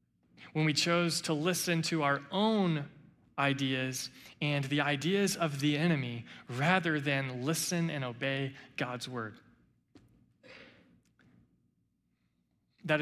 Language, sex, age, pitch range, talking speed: English, male, 20-39, 135-195 Hz, 105 wpm